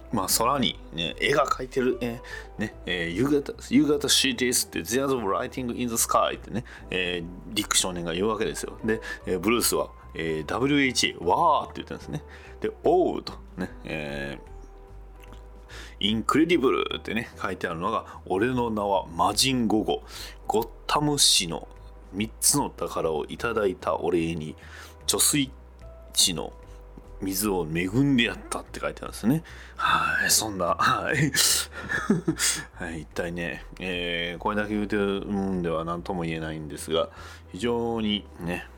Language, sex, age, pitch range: Japanese, male, 30-49, 80-115 Hz